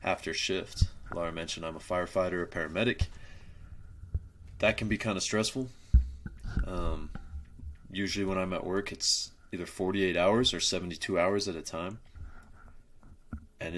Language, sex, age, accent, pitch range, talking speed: English, male, 30-49, American, 80-100 Hz, 140 wpm